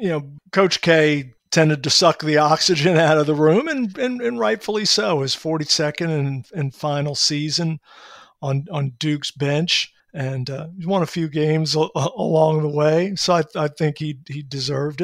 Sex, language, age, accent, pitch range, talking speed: male, English, 50-69, American, 145-165 Hz, 185 wpm